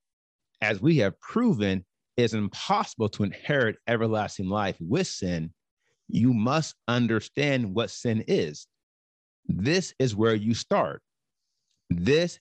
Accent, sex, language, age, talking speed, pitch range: American, male, English, 40-59, 120 wpm, 95-130 Hz